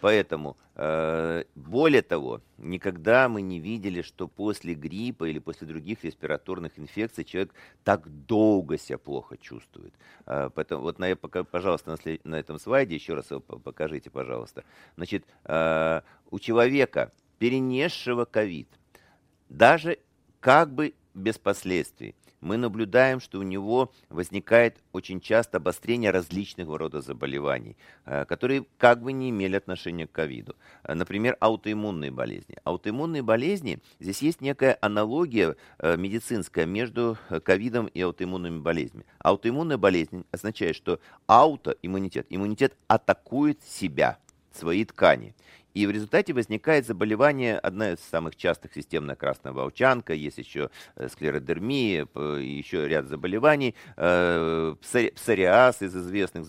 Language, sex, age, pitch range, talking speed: Russian, male, 50-69, 85-120 Hz, 115 wpm